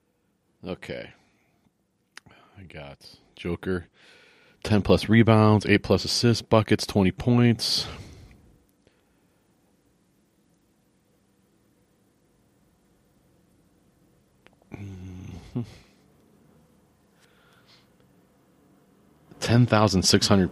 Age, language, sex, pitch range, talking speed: 40-59, English, male, 85-105 Hz, 40 wpm